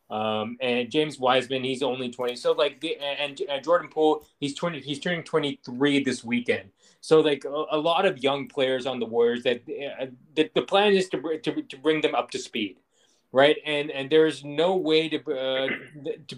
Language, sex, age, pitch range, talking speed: English, male, 20-39, 125-150 Hz, 205 wpm